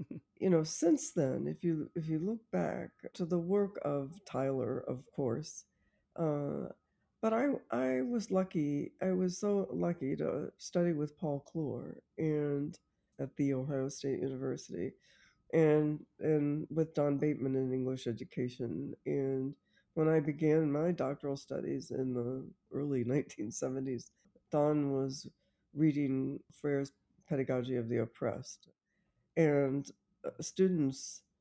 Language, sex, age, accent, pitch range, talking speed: English, female, 60-79, American, 130-155 Hz, 130 wpm